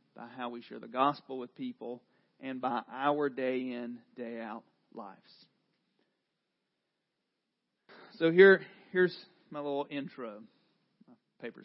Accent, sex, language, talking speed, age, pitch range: American, male, English, 115 wpm, 40-59, 155-210 Hz